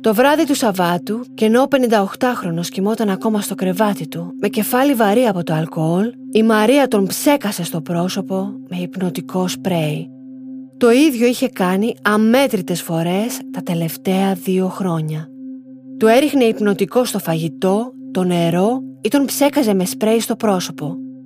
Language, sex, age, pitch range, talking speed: Greek, female, 30-49, 185-255 Hz, 145 wpm